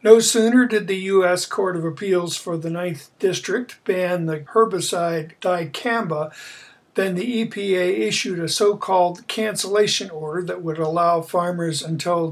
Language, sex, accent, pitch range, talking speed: English, male, American, 165-195 Hz, 140 wpm